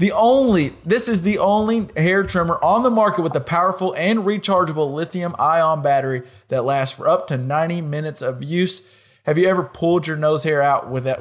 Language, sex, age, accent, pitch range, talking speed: English, male, 20-39, American, 140-185 Hz, 205 wpm